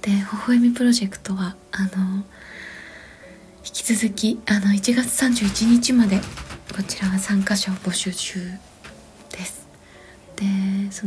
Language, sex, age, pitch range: Japanese, female, 20-39, 195-225 Hz